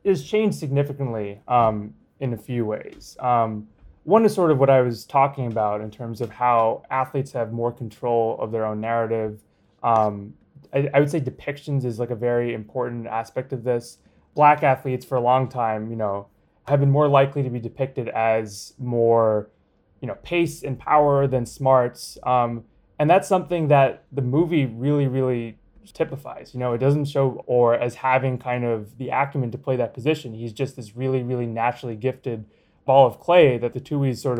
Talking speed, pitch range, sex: 190 wpm, 115-140 Hz, male